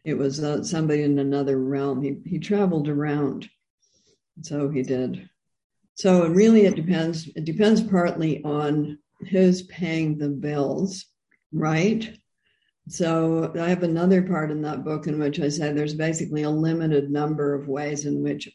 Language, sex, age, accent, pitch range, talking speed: English, female, 60-79, American, 145-165 Hz, 160 wpm